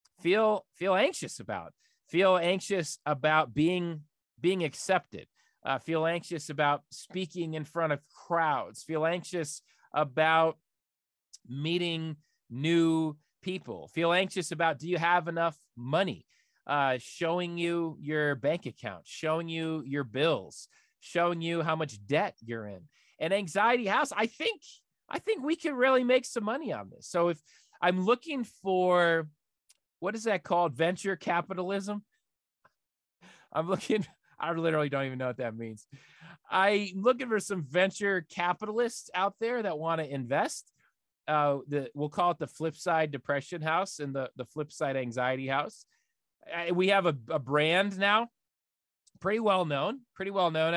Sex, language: male, English